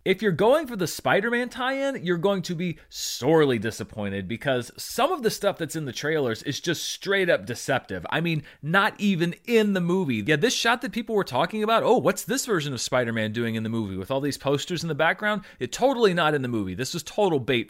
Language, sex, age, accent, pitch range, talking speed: English, male, 30-49, American, 130-190 Hz, 230 wpm